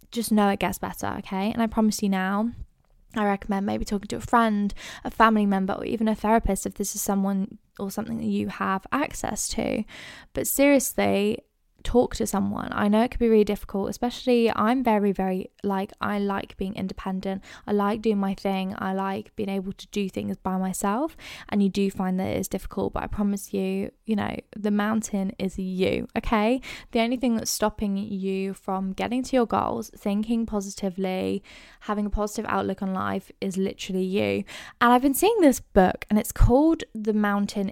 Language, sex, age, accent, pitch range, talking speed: English, female, 10-29, British, 195-225 Hz, 195 wpm